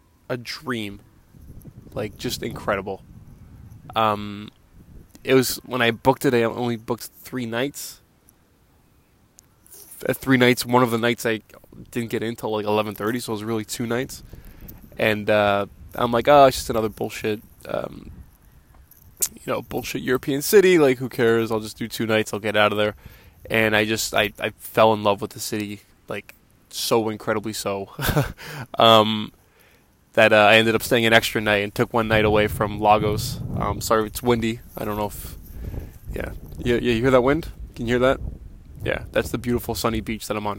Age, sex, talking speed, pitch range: 20-39, male, 185 wpm, 105-125 Hz